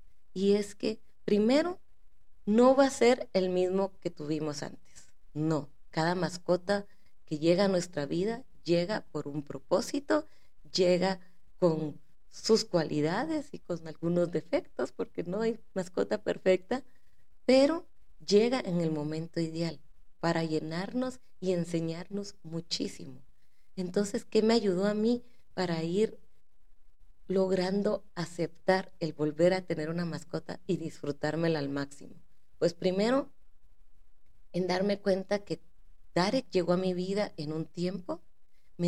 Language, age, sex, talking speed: Spanish, 30-49, female, 130 wpm